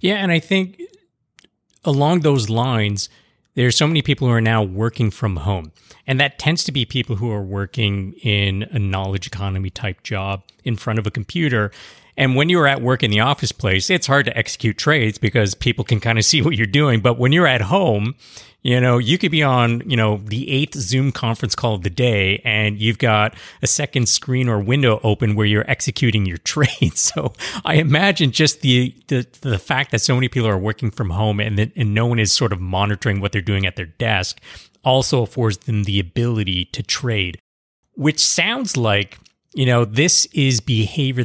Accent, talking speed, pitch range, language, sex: American, 205 wpm, 105-130 Hz, English, male